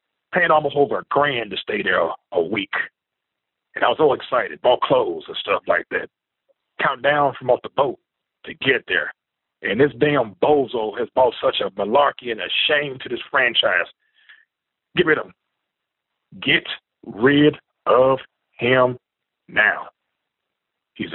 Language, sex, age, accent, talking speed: English, male, 40-59, American, 160 wpm